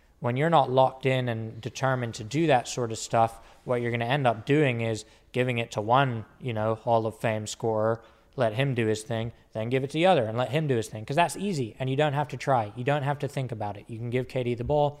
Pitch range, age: 115-135 Hz, 20-39